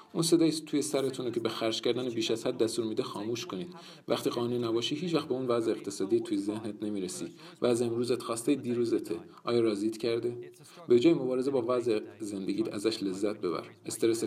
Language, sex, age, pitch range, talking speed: Persian, male, 40-59, 105-145 Hz, 190 wpm